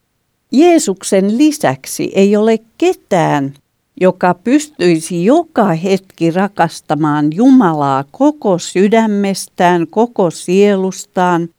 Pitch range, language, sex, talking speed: 155-225 Hz, Finnish, female, 80 wpm